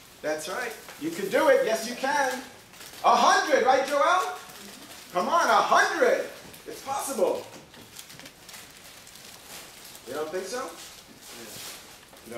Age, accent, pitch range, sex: 40-59, American, 160-230 Hz, male